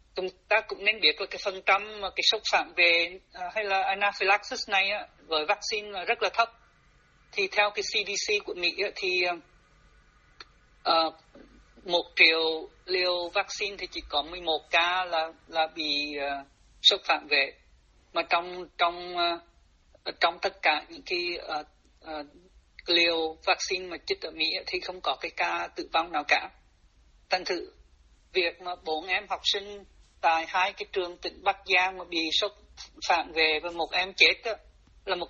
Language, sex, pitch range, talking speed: Vietnamese, male, 160-195 Hz, 160 wpm